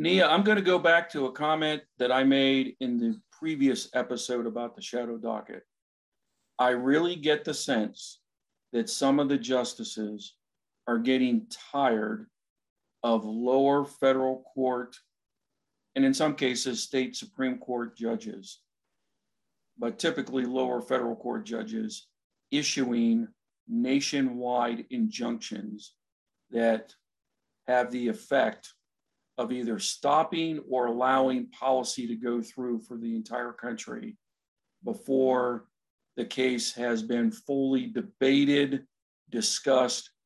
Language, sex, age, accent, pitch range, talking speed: English, male, 50-69, American, 120-150 Hz, 115 wpm